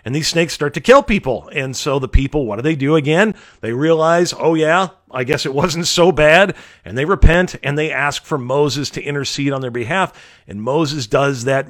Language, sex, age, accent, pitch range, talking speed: English, male, 40-59, American, 130-175 Hz, 220 wpm